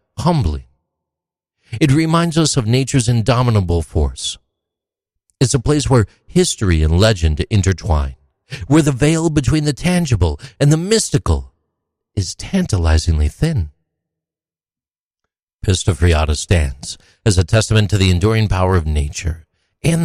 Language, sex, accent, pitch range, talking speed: English, male, American, 85-130 Hz, 120 wpm